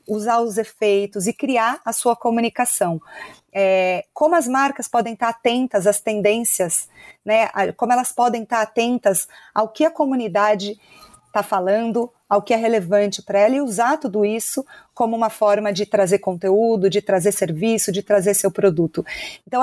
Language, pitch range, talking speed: Portuguese, 200-230 Hz, 160 wpm